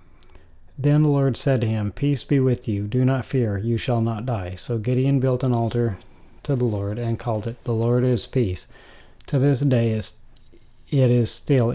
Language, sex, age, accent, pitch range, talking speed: English, male, 40-59, American, 110-130 Hz, 195 wpm